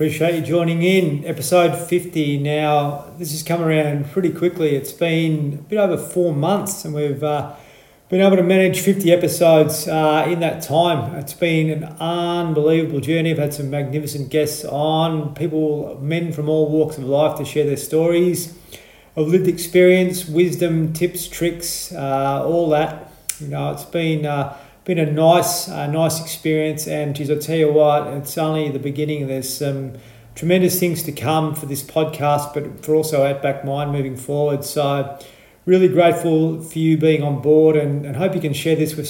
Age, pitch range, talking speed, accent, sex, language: 40-59, 145-165 Hz, 180 wpm, Australian, male, English